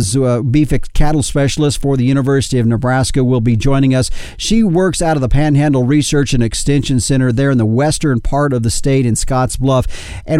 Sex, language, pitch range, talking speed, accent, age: male, English, 125-155 Hz, 195 wpm, American, 50-69